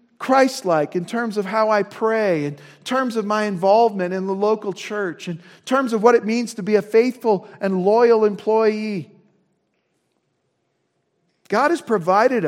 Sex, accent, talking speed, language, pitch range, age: male, American, 155 wpm, English, 180-225 Hz, 50-69